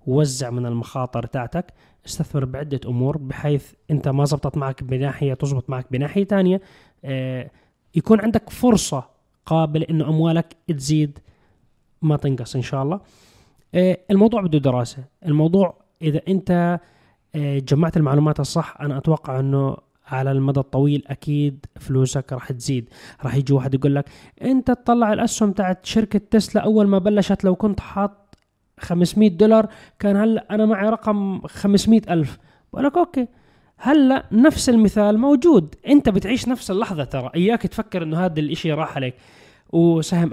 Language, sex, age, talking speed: Arabic, male, 20-39, 140 wpm